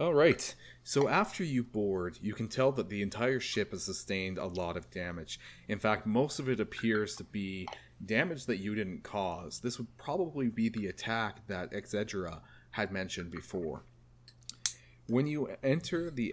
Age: 30-49